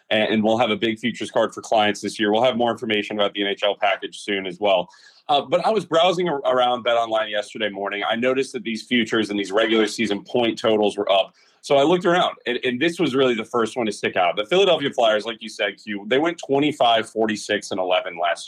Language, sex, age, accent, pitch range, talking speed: English, male, 30-49, American, 110-140 Hz, 225 wpm